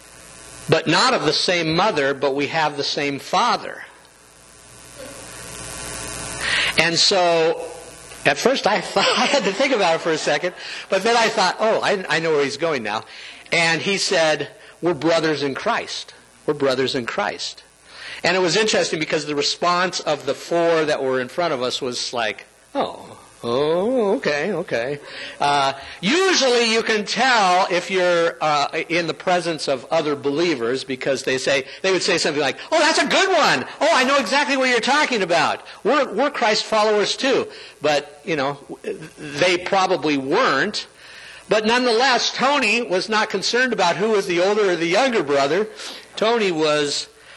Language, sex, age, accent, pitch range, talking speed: English, male, 50-69, American, 140-215 Hz, 170 wpm